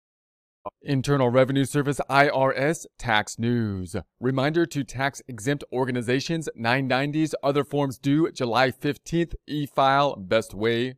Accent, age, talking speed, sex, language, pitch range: American, 30-49, 105 wpm, male, English, 120-145 Hz